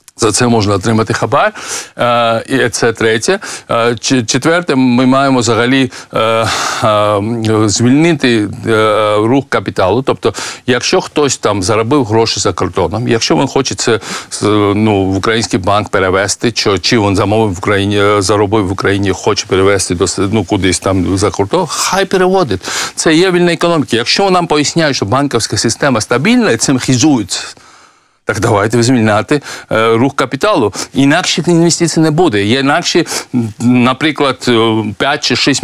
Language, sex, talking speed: Ukrainian, male, 125 wpm